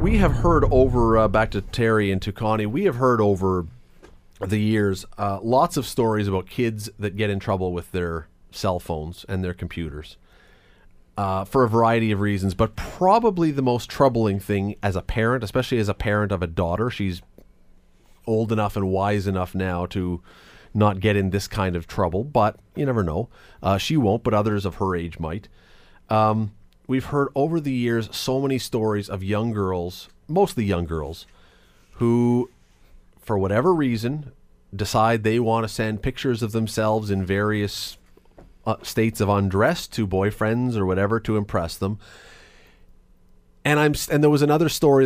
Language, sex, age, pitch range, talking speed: English, male, 30-49, 95-115 Hz, 170 wpm